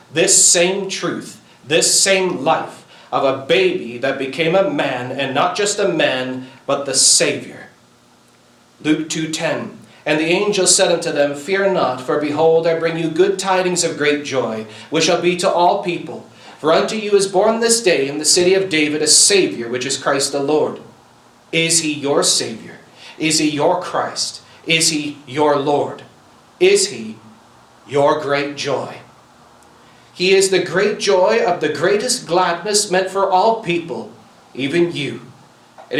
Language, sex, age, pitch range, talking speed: English, male, 40-59, 135-170 Hz, 165 wpm